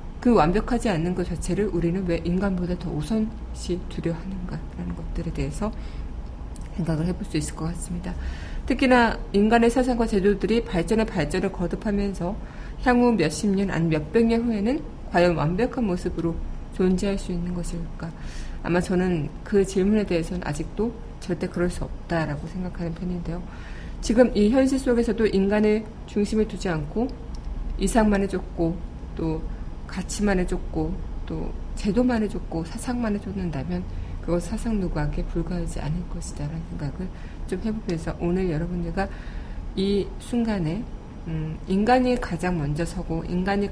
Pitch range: 160-205 Hz